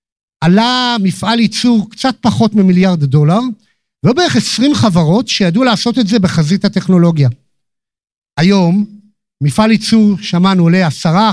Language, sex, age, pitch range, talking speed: Hebrew, male, 50-69, 160-220 Hz, 120 wpm